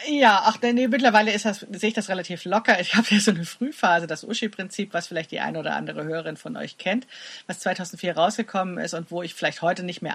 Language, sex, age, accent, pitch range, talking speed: German, female, 40-59, German, 160-205 Hz, 225 wpm